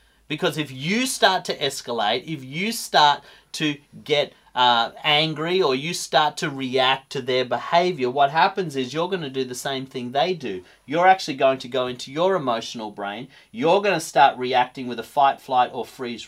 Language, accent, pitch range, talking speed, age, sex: English, Australian, 130-175 Hz, 195 wpm, 40-59, male